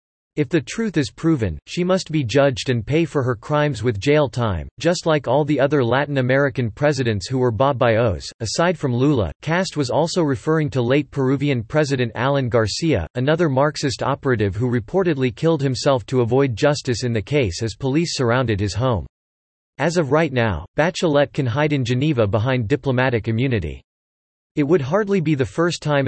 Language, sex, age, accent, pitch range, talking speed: English, male, 40-59, American, 115-150 Hz, 185 wpm